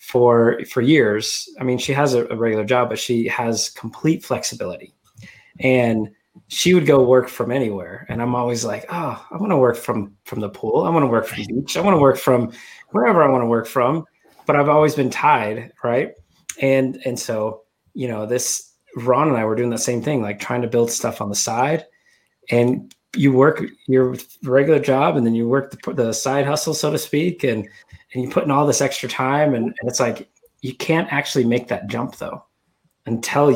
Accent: American